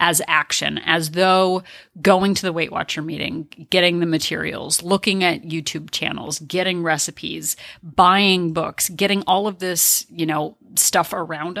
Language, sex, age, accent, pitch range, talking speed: English, female, 30-49, American, 160-195 Hz, 150 wpm